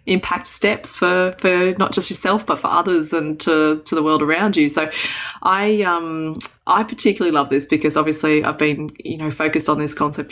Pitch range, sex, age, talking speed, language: 150-180 Hz, female, 20-39, 200 wpm, English